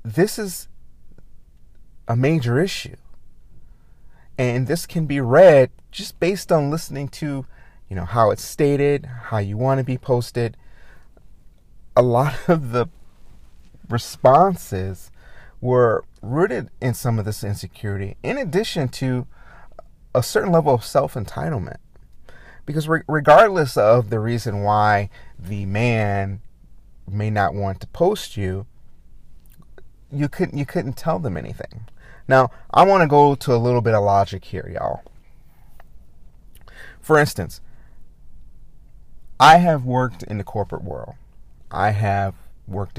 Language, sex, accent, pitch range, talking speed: English, male, American, 100-135 Hz, 130 wpm